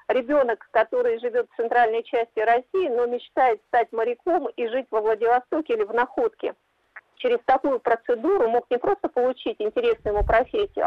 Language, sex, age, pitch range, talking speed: Russian, female, 40-59, 225-310 Hz, 155 wpm